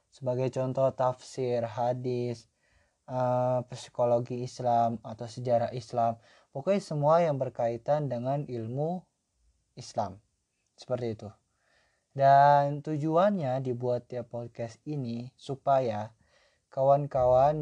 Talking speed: 90 wpm